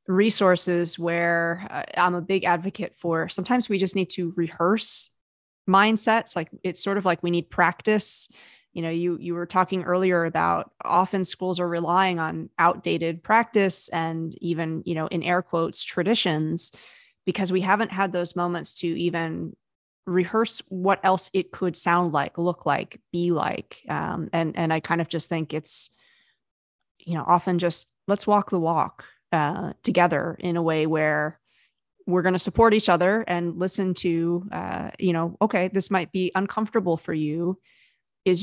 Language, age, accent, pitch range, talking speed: English, 20-39, American, 165-190 Hz, 170 wpm